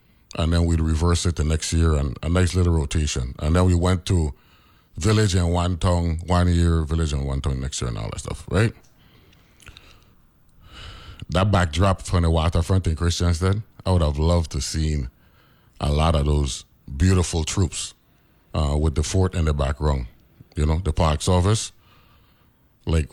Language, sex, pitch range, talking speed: English, male, 75-90 Hz, 175 wpm